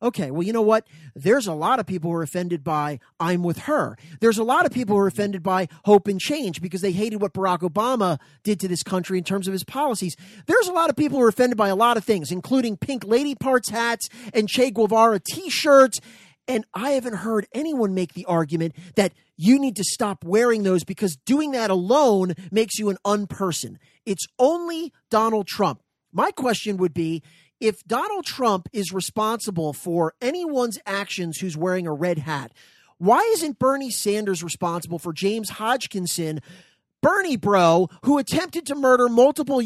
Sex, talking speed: male, 190 wpm